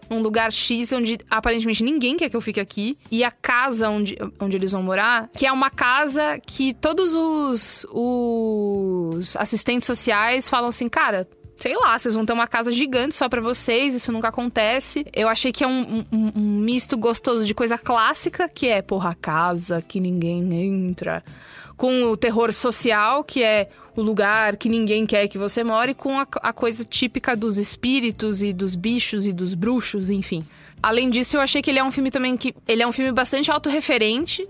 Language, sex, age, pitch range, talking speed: English, female, 20-39, 215-260 Hz, 190 wpm